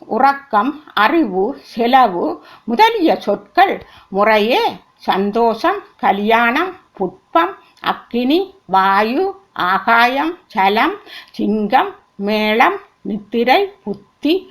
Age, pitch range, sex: 50-69, 225-375 Hz, female